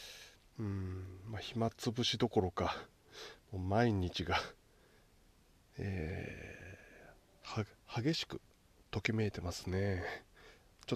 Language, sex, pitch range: Japanese, male, 95-120 Hz